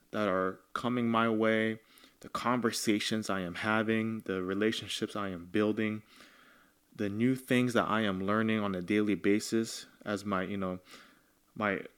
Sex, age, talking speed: male, 20-39, 155 wpm